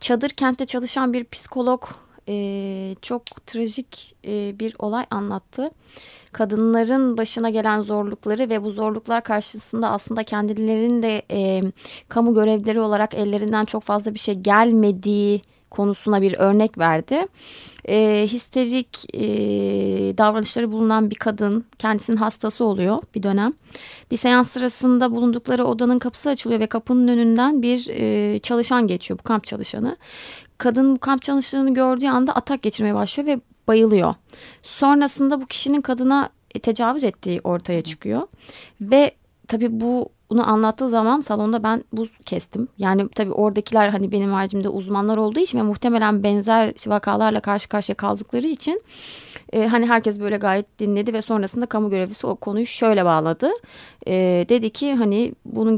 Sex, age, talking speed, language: female, 30-49, 140 wpm, Turkish